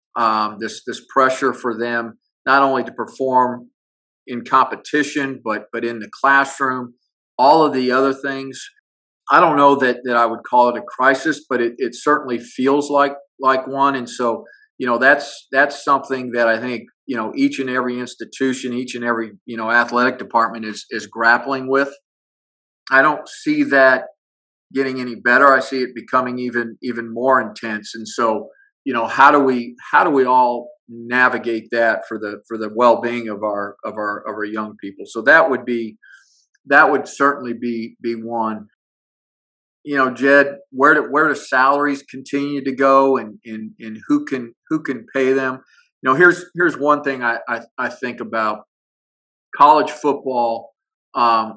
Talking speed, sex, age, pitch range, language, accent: 180 wpm, male, 50-69, 115-135 Hz, English, American